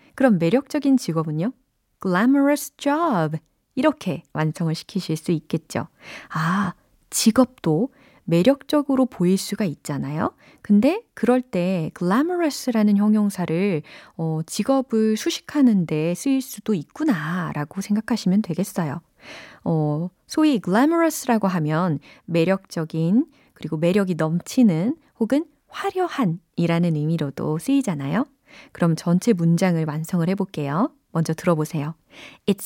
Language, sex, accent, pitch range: Korean, female, native, 165-265 Hz